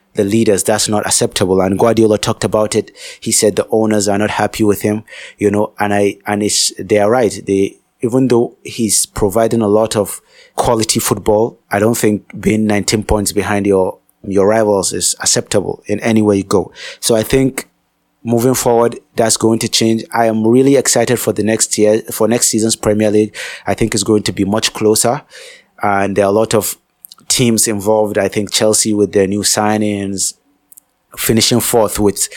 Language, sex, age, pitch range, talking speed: English, male, 30-49, 105-115 Hz, 190 wpm